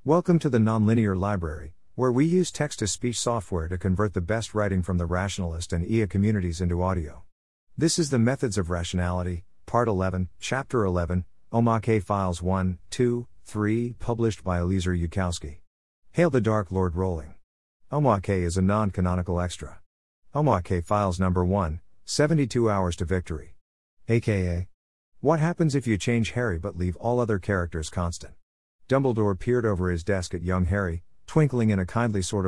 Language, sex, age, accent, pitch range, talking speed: English, male, 50-69, American, 90-115 Hz, 160 wpm